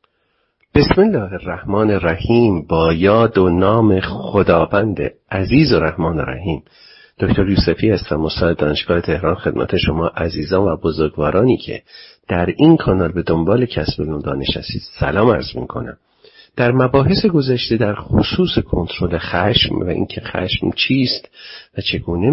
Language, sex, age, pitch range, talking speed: Persian, male, 50-69, 85-130 Hz, 130 wpm